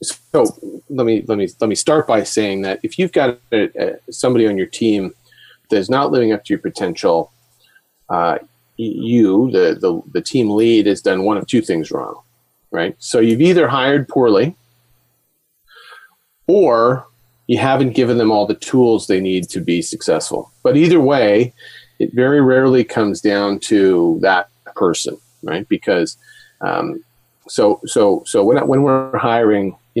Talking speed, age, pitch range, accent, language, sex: 165 wpm, 40-59, 105-145 Hz, American, English, male